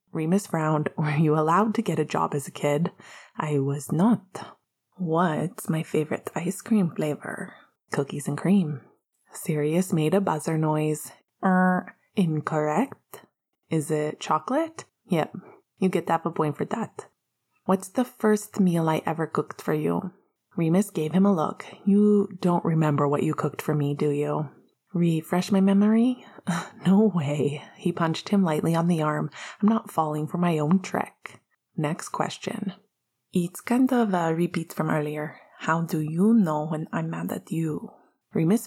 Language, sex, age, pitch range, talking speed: English, female, 20-39, 155-195 Hz, 160 wpm